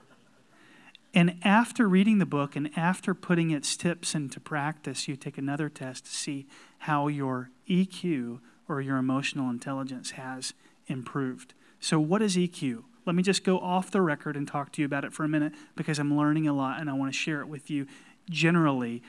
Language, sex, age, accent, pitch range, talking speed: English, male, 30-49, American, 150-195 Hz, 190 wpm